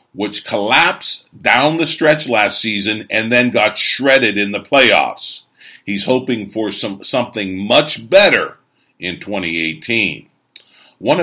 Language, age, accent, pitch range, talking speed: English, 50-69, American, 105-130 Hz, 130 wpm